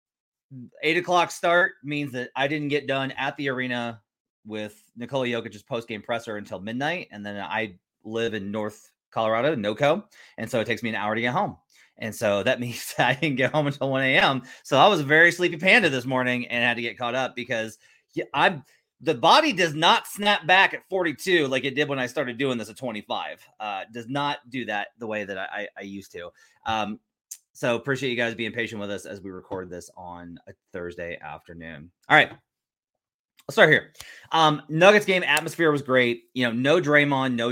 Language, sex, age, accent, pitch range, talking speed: English, male, 30-49, American, 110-145 Hz, 210 wpm